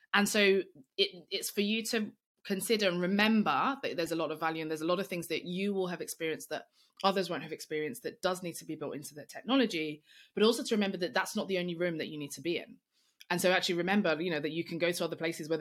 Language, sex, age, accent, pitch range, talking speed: English, female, 20-39, British, 155-210 Hz, 275 wpm